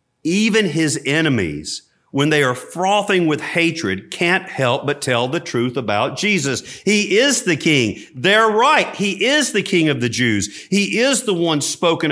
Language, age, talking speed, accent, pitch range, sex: English, 50-69, 175 wpm, American, 110-160 Hz, male